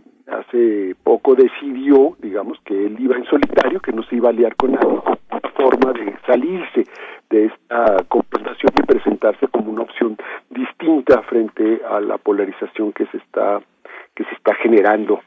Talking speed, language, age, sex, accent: 165 wpm, Spanish, 50-69, male, Mexican